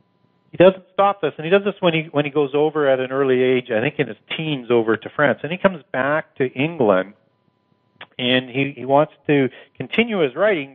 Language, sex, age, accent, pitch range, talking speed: English, male, 50-69, American, 115-150 Hz, 225 wpm